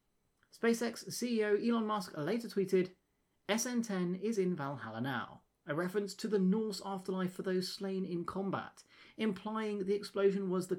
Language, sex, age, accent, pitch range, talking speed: English, male, 30-49, British, 160-210 Hz, 150 wpm